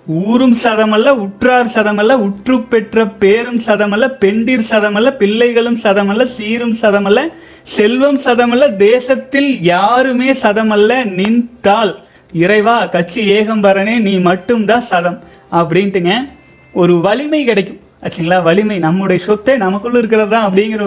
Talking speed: 125 wpm